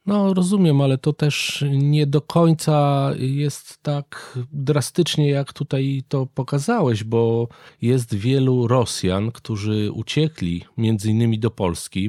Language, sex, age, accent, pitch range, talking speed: Polish, male, 40-59, native, 110-140 Hz, 120 wpm